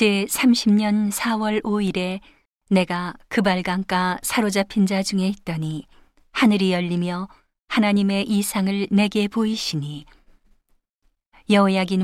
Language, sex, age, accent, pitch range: Korean, female, 40-59, native, 180-210 Hz